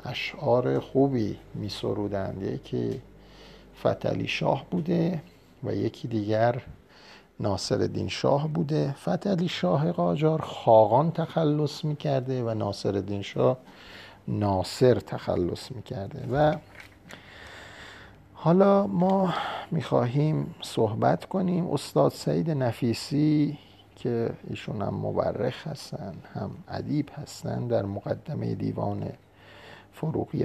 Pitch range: 100-145 Hz